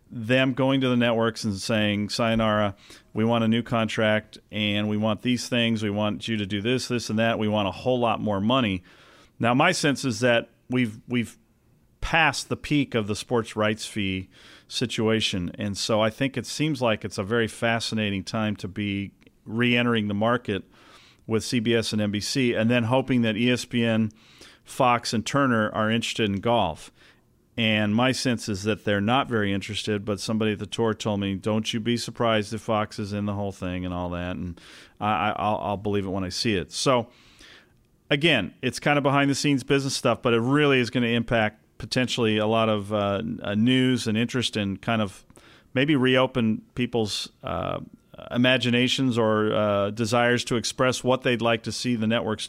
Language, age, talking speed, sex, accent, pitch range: English, 40-59, 190 wpm, male, American, 105-120 Hz